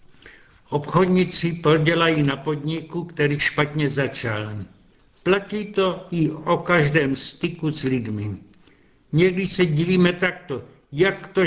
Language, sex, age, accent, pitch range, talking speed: Czech, male, 70-89, native, 140-175 Hz, 110 wpm